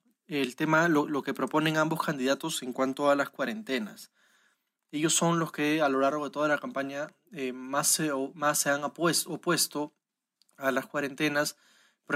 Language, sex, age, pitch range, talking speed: Spanish, male, 20-39, 135-160 Hz, 175 wpm